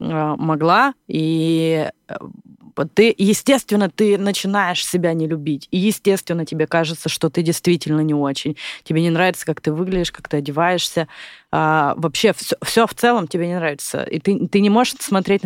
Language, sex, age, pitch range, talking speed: Russian, female, 20-39, 150-180 Hz, 155 wpm